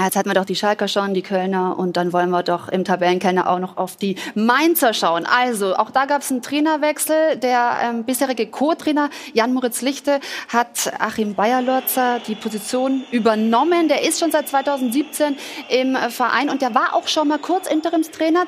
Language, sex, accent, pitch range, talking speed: German, female, German, 215-290 Hz, 180 wpm